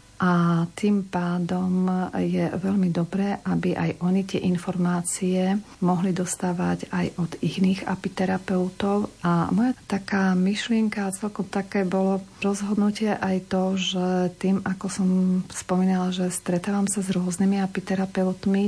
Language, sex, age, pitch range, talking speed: Slovak, female, 50-69, 180-195 Hz, 120 wpm